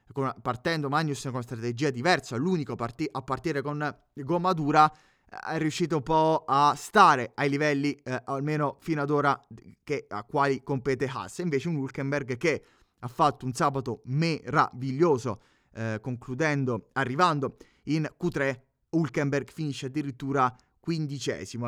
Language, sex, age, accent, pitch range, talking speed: Italian, male, 20-39, native, 125-150 Hz, 140 wpm